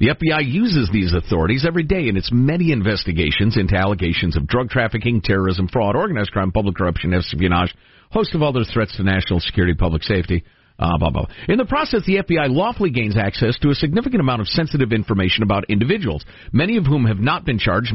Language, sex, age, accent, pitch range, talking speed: English, male, 50-69, American, 100-155 Hz, 190 wpm